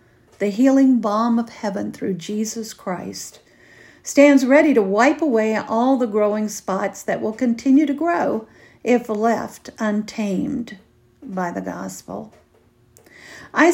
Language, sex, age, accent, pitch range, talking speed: English, female, 50-69, American, 190-260 Hz, 125 wpm